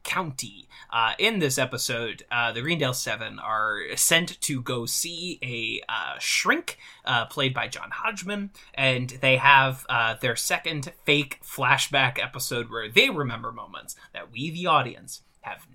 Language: English